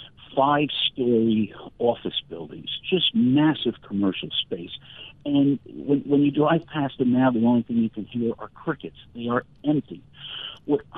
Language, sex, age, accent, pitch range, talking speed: English, male, 60-79, American, 110-145 Hz, 150 wpm